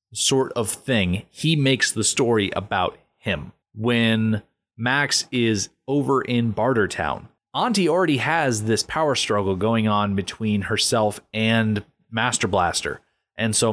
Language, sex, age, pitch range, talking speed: English, male, 30-49, 105-130 Hz, 135 wpm